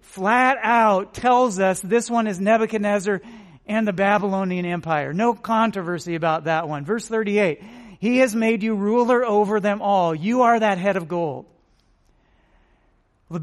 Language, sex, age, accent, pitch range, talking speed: English, male, 40-59, American, 190-235 Hz, 150 wpm